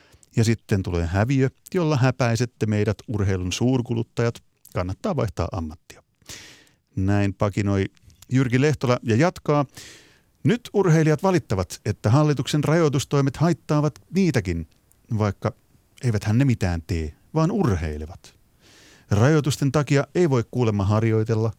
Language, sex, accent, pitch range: Finnish, male, native, 100-130 Hz